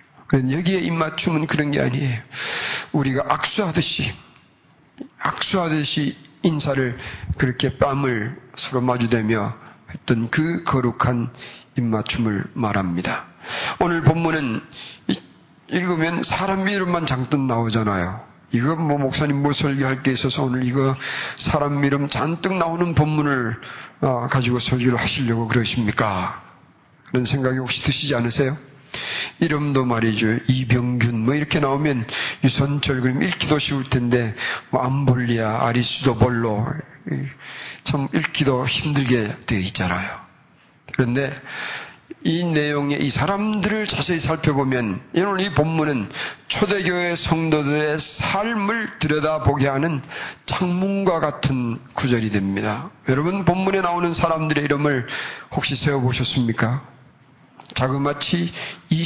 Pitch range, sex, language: 125-155 Hz, male, Korean